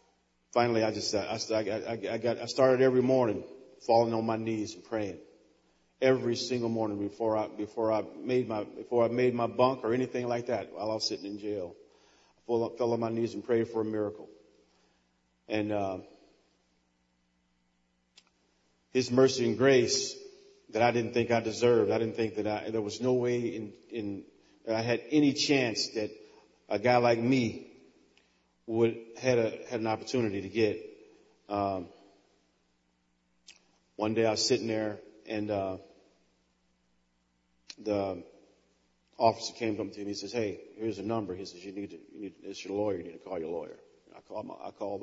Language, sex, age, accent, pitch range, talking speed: English, male, 40-59, American, 80-120 Hz, 185 wpm